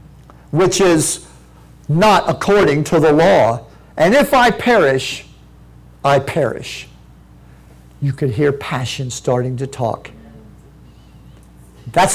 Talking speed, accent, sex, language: 105 wpm, American, male, English